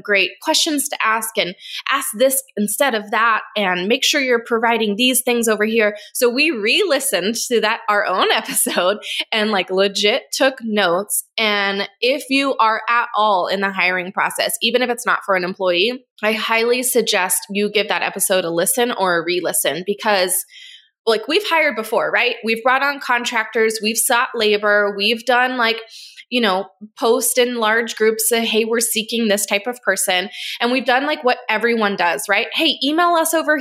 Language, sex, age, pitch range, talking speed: English, female, 20-39, 210-265 Hz, 185 wpm